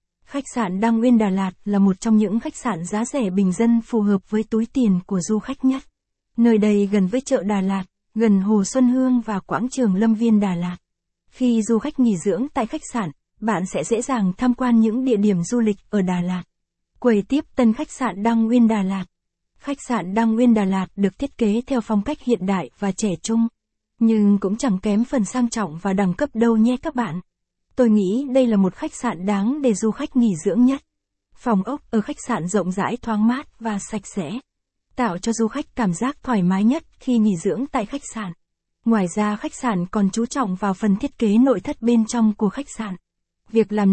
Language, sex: Vietnamese, female